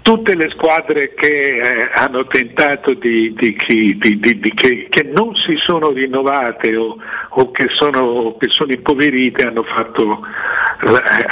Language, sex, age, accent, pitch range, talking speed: Italian, male, 60-79, native, 115-145 Hz, 145 wpm